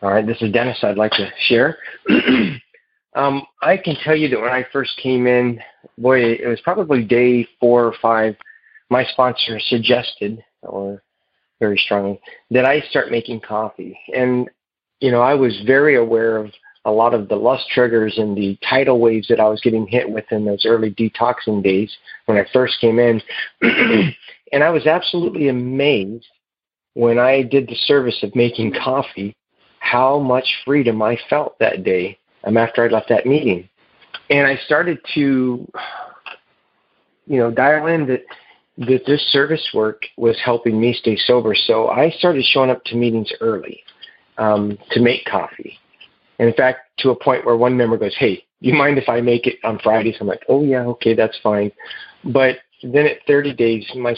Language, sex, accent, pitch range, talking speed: English, male, American, 110-130 Hz, 175 wpm